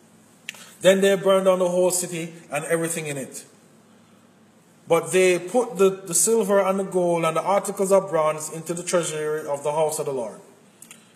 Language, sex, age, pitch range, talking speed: English, male, 30-49, 160-195 Hz, 185 wpm